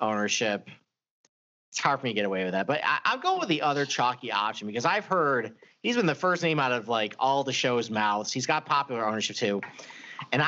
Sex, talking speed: male, 220 wpm